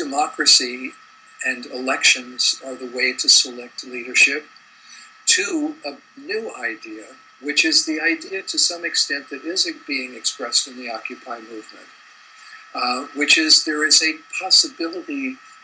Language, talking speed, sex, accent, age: English, 135 wpm, male, American, 50-69